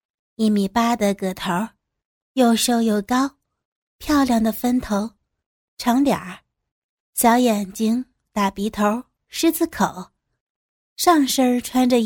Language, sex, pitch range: Chinese, female, 200-255 Hz